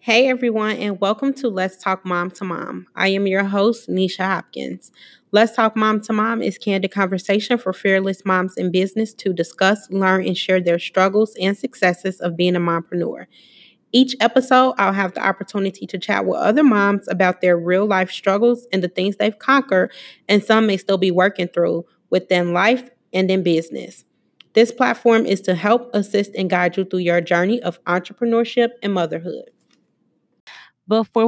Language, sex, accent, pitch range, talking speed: English, female, American, 185-220 Hz, 175 wpm